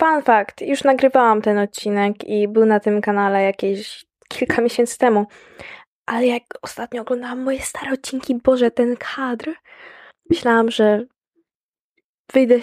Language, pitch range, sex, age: Polish, 195-240 Hz, female, 10-29